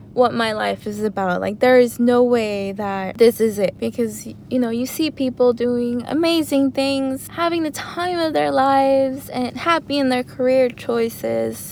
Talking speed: 180 wpm